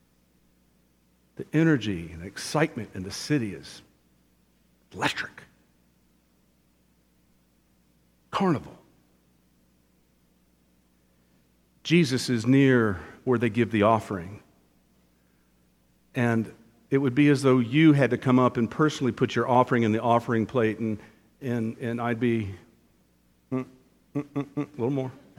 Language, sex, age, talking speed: English, male, 50-69, 120 wpm